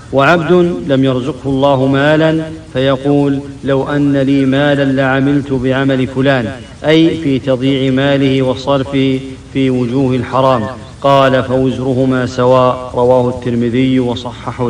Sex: male